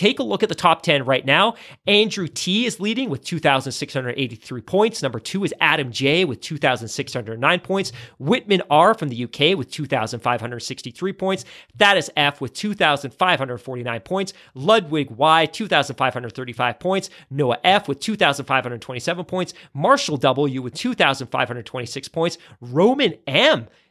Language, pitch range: English, 135-195 Hz